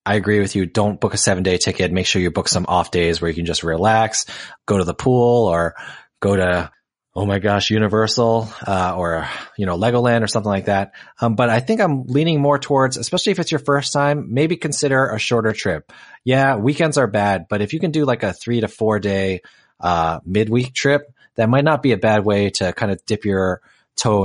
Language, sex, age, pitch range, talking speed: English, male, 20-39, 95-120 Hz, 230 wpm